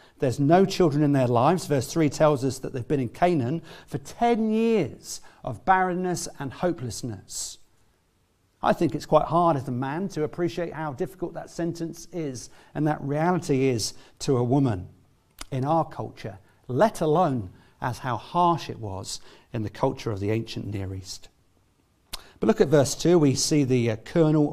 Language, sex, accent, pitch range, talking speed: English, male, British, 125-185 Hz, 175 wpm